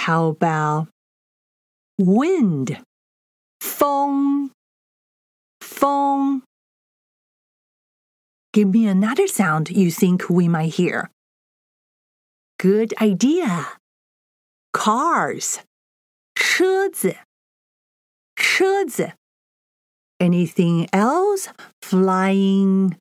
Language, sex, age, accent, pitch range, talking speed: English, female, 40-59, American, 185-280 Hz, 55 wpm